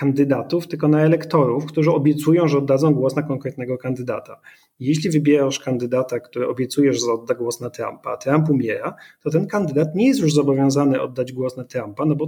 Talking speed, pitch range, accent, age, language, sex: 185 wpm, 125-165 Hz, native, 30-49, Polish, male